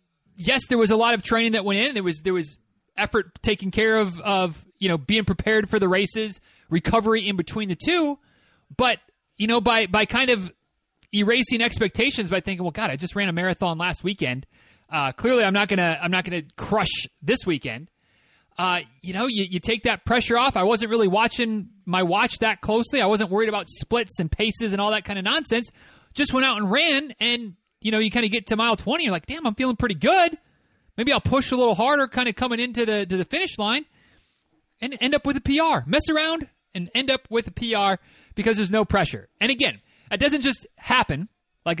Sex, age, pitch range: male, 30-49, 185-235 Hz